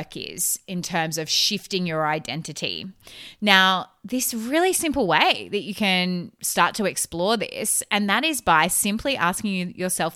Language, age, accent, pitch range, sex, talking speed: English, 20-39, Australian, 170-230 Hz, female, 155 wpm